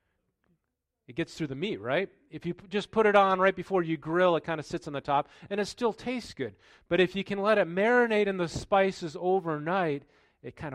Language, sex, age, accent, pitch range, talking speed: English, male, 40-59, American, 120-180 Hz, 230 wpm